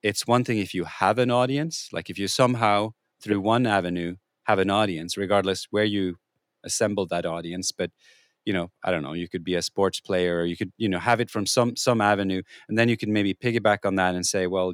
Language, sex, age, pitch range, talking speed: English, male, 30-49, 90-110 Hz, 235 wpm